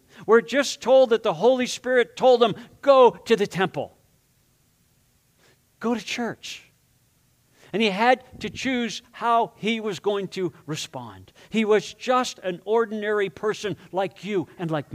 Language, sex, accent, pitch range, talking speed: English, male, American, 140-220 Hz, 150 wpm